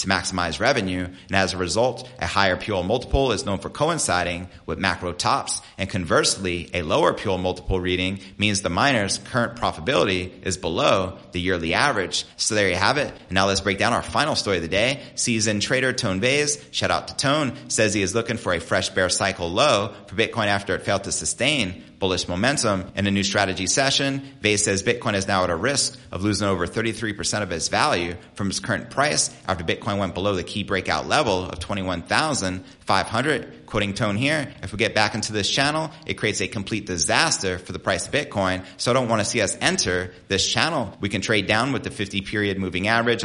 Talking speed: 210 wpm